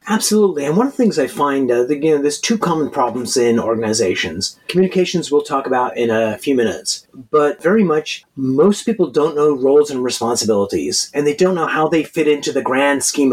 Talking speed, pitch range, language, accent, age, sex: 210 wpm, 135-170 Hz, English, American, 30-49, male